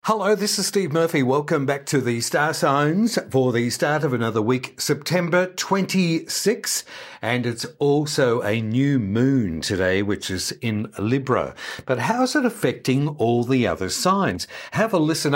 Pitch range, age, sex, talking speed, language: 110-155 Hz, 50-69, male, 160 wpm, English